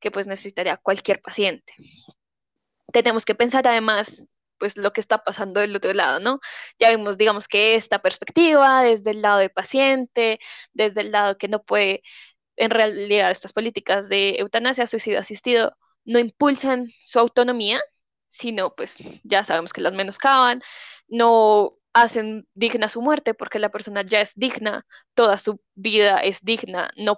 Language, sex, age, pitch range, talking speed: Spanish, female, 10-29, 205-245 Hz, 155 wpm